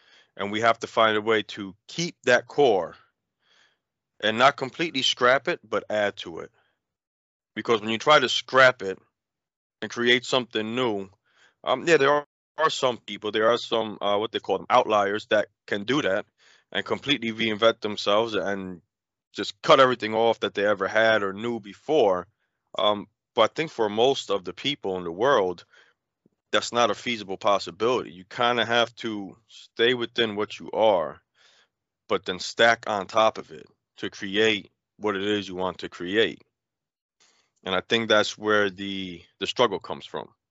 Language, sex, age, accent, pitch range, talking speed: English, male, 30-49, American, 100-120 Hz, 180 wpm